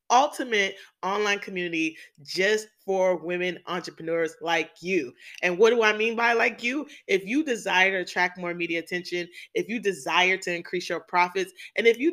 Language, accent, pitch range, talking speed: English, American, 190-260 Hz, 175 wpm